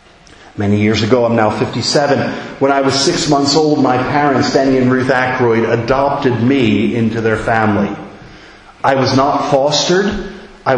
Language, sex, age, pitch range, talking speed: English, male, 40-59, 115-155 Hz, 155 wpm